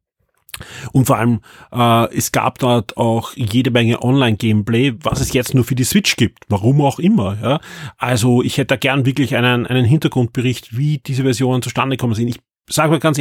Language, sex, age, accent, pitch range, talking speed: German, male, 30-49, German, 120-140 Hz, 190 wpm